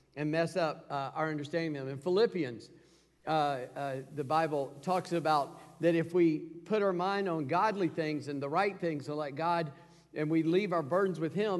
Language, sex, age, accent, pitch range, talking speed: English, male, 50-69, American, 155-195 Hz, 200 wpm